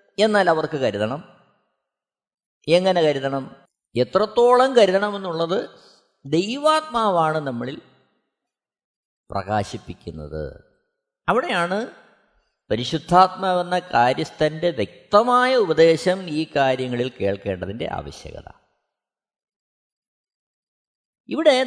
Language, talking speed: Malayalam, 55 wpm